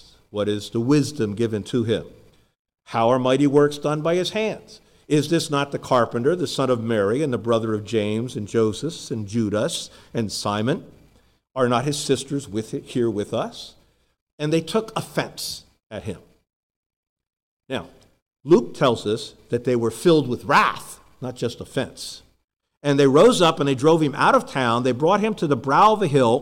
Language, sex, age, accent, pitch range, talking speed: English, male, 50-69, American, 115-150 Hz, 190 wpm